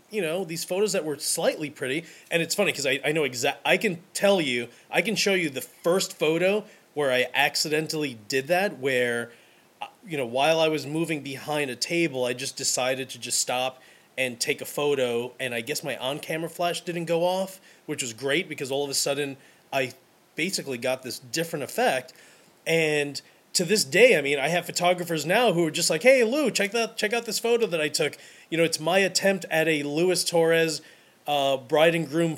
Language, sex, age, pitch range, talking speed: English, male, 30-49, 145-195 Hz, 210 wpm